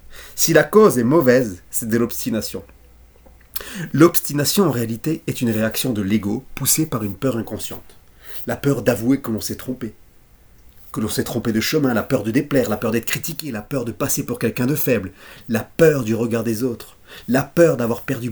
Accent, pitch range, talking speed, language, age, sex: French, 105-135 Hz, 195 wpm, French, 30-49, male